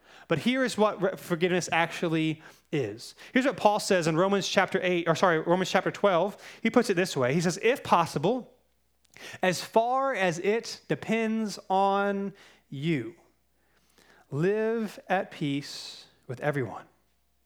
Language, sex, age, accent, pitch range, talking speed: English, male, 30-49, American, 180-235 Hz, 140 wpm